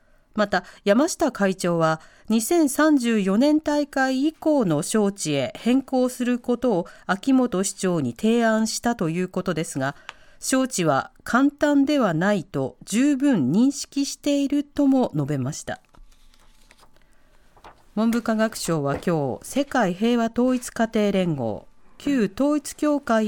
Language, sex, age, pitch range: Japanese, female, 40-59, 185-280 Hz